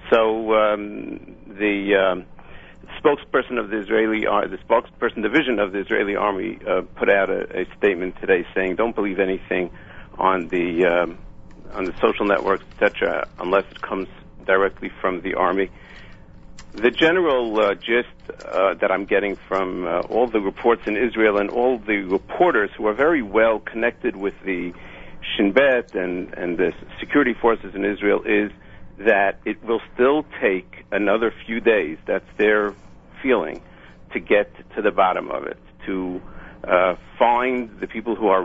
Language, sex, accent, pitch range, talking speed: English, male, American, 95-110 Hz, 160 wpm